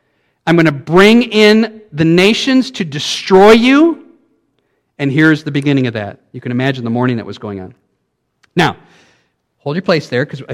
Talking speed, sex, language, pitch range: 175 wpm, male, English, 135-185 Hz